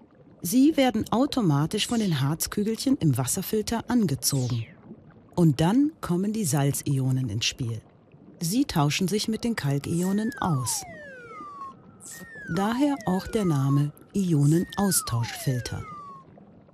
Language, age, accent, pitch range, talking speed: German, 40-59, German, 140-235 Hz, 100 wpm